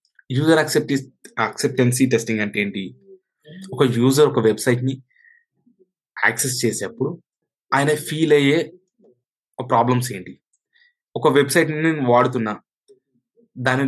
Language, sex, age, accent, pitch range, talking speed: Telugu, male, 20-39, native, 125-155 Hz, 95 wpm